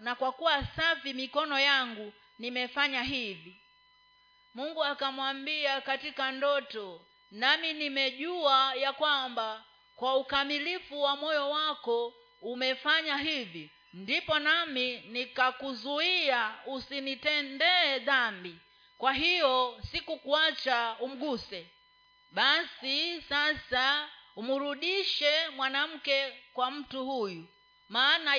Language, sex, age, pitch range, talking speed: Swahili, female, 40-59, 250-315 Hz, 85 wpm